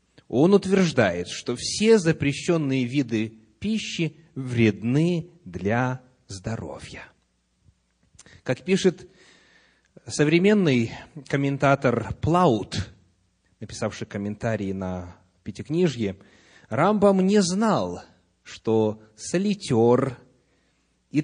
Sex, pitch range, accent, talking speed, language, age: male, 110-160 Hz, native, 70 wpm, Russian, 30-49